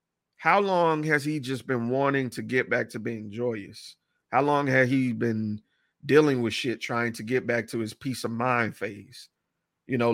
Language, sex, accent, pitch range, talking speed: English, male, American, 115-155 Hz, 195 wpm